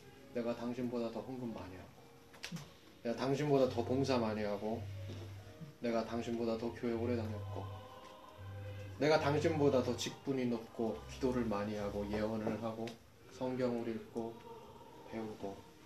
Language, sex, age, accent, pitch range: Korean, male, 20-39, native, 115-155 Hz